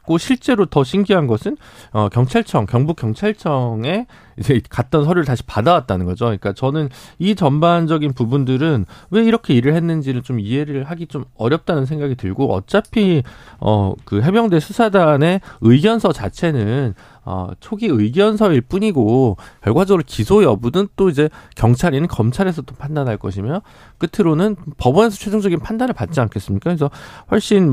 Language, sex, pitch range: Korean, male, 115-170 Hz